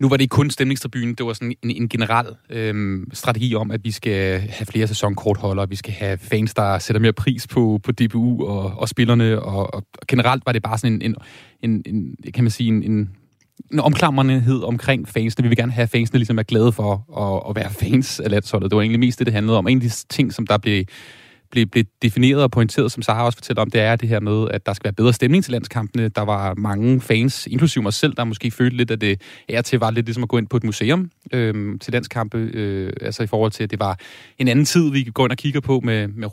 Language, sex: Danish, male